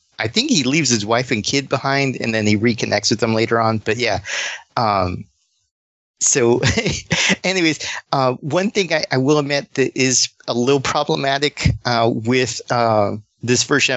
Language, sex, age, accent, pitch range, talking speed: English, male, 40-59, American, 115-145 Hz, 170 wpm